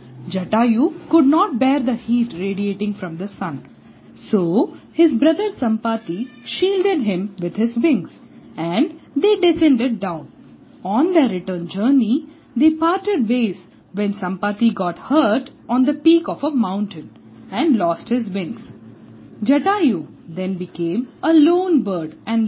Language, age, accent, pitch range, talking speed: English, 50-69, Indian, 185-295 Hz, 135 wpm